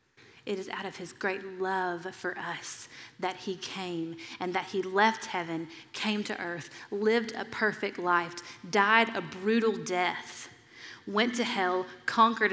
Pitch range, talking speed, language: 180-235 Hz, 155 wpm, English